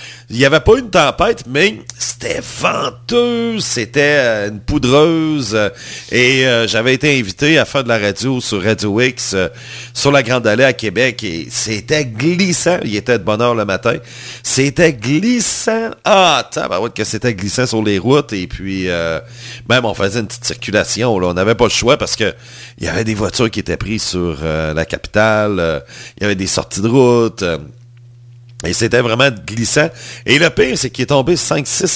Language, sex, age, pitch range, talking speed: English, male, 40-59, 105-130 Hz, 195 wpm